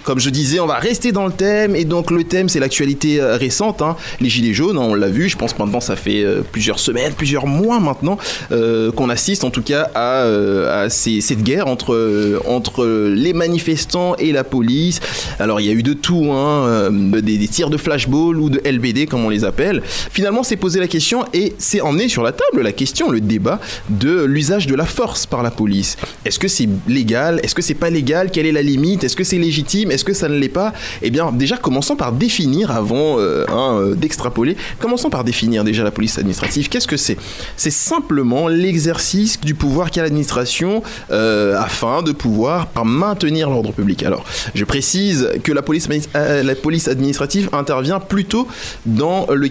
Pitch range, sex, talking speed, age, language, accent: 115-170 Hz, male, 200 wpm, 20-39, French, French